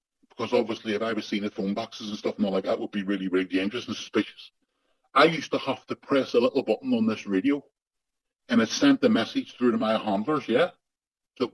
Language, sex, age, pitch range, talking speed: English, female, 40-59, 110-145 Hz, 235 wpm